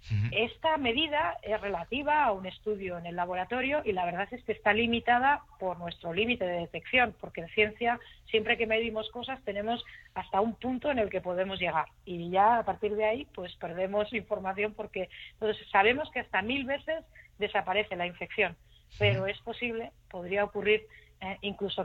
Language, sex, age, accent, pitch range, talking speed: Spanish, female, 40-59, Spanish, 170-210 Hz, 175 wpm